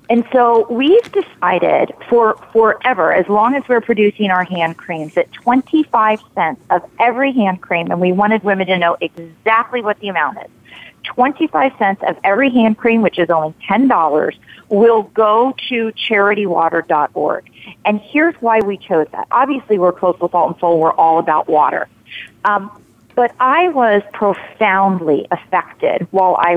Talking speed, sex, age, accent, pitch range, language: 160 wpm, female, 40-59, American, 175-235 Hz, English